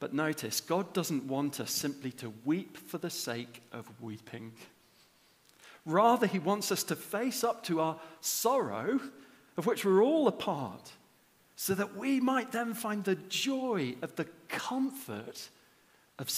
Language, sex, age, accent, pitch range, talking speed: English, male, 40-59, British, 150-230 Hz, 155 wpm